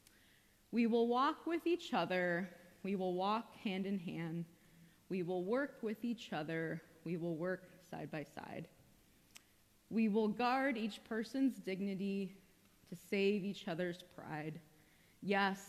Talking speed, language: 140 wpm, English